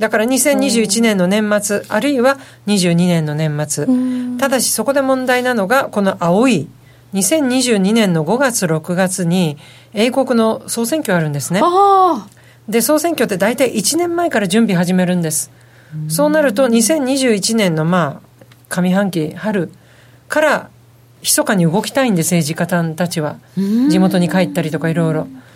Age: 50-69